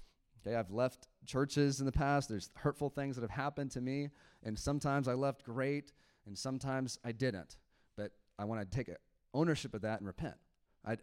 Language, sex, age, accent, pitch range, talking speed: English, male, 30-49, American, 120-150 Hz, 190 wpm